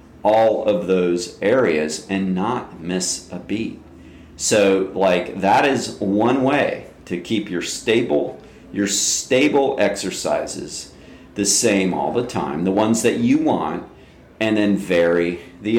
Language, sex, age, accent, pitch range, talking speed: English, male, 40-59, American, 90-110 Hz, 135 wpm